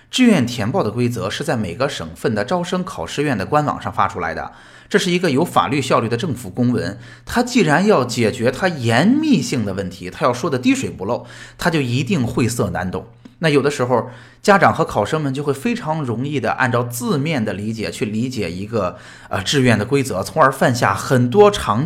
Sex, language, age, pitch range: male, Chinese, 20-39, 105-155 Hz